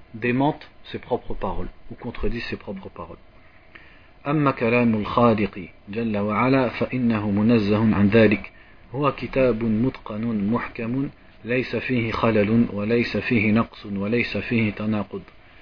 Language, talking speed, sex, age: French, 155 wpm, male, 40-59